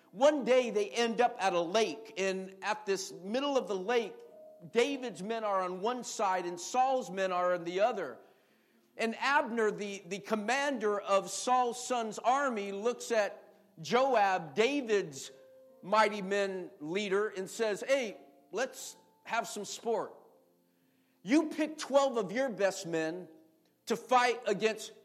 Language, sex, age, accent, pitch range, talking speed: English, male, 50-69, American, 180-240 Hz, 145 wpm